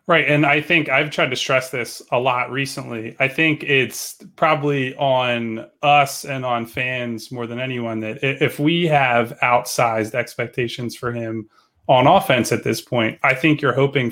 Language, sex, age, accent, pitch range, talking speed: English, male, 20-39, American, 115-140 Hz, 175 wpm